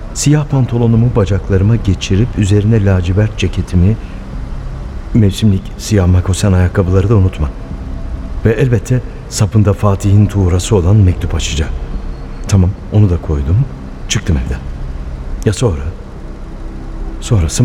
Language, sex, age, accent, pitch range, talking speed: Turkish, male, 60-79, native, 80-110 Hz, 100 wpm